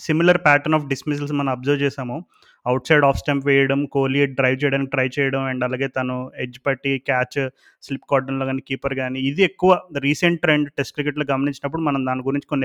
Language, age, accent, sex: Telugu, 30-49, native, male